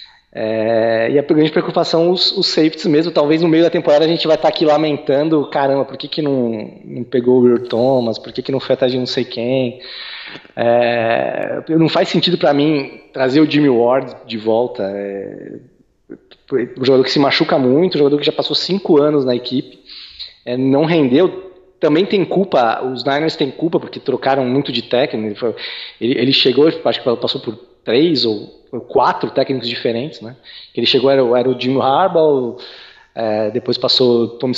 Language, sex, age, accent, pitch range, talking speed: Portuguese, male, 20-39, Brazilian, 125-155 Hz, 195 wpm